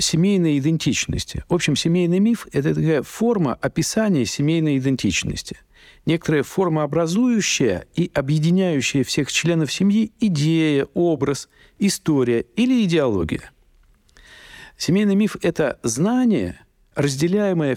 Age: 50-69